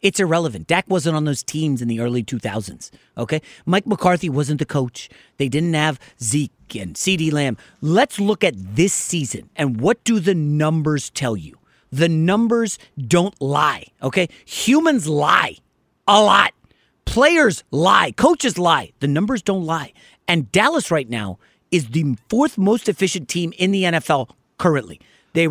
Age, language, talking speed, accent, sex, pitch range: 40-59, English, 160 wpm, American, male, 150-225 Hz